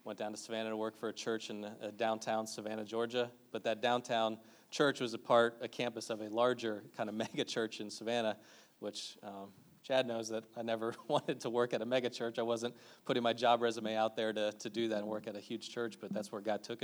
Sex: male